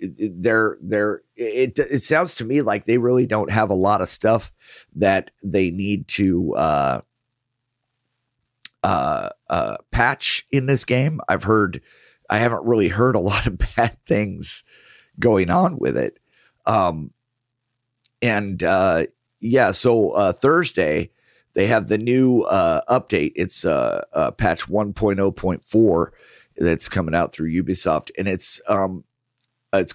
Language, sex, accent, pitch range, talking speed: English, male, American, 95-125 Hz, 140 wpm